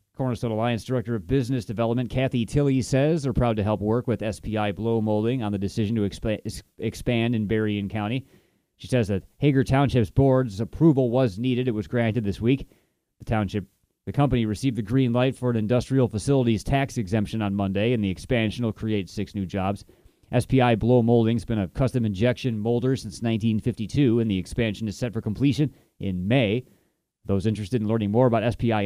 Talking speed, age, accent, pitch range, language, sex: 190 wpm, 30-49, American, 110-130 Hz, English, male